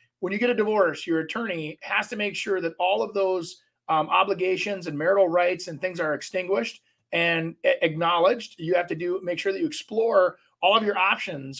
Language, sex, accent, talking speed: English, male, American, 205 wpm